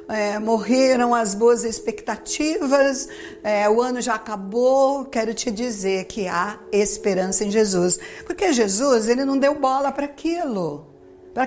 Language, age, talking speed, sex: Portuguese, 50-69, 140 wpm, female